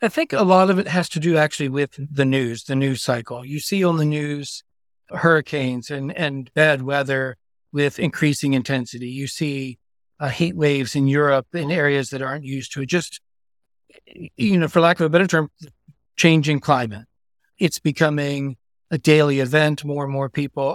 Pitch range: 135-160 Hz